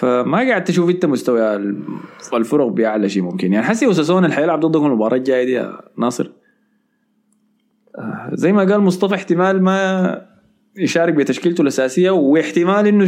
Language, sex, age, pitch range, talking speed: Arabic, male, 20-39, 115-190 Hz, 135 wpm